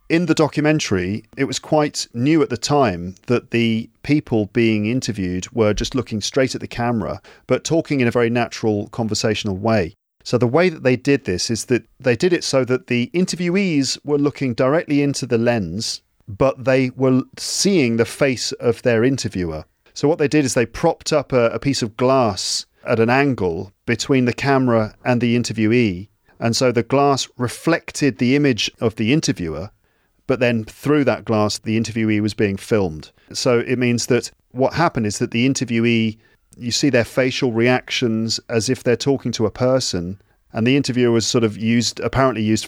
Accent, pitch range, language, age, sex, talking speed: British, 110-130 Hz, English, 40-59, male, 190 wpm